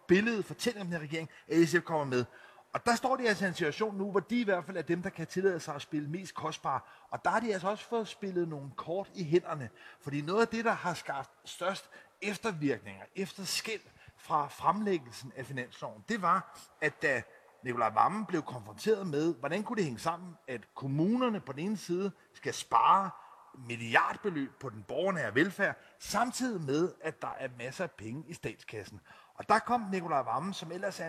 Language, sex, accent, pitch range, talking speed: Danish, male, native, 155-200 Hz, 205 wpm